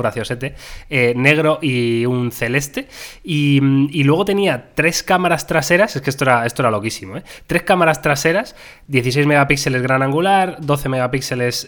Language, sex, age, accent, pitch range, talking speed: Spanish, male, 20-39, Spanish, 125-155 Hz, 140 wpm